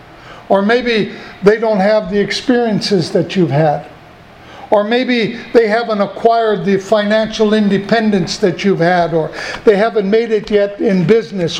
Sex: male